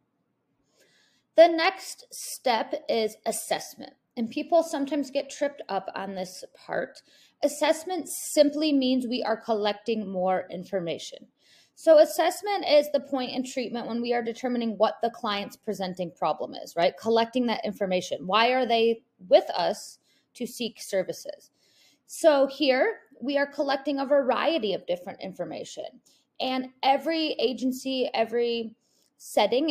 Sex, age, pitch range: female, 20-39, 215-285 Hz